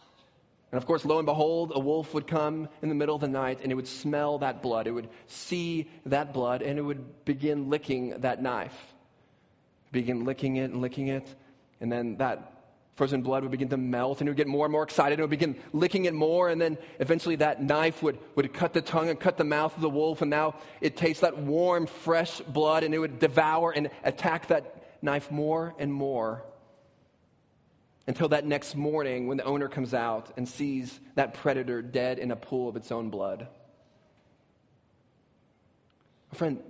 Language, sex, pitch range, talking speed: English, male, 135-165 Hz, 200 wpm